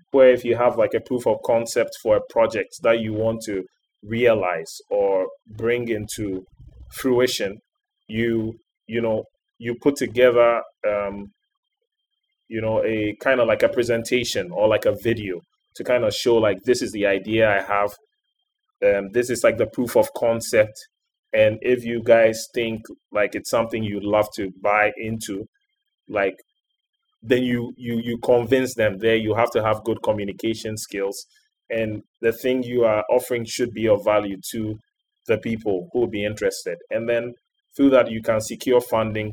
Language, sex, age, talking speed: English, male, 20-39, 170 wpm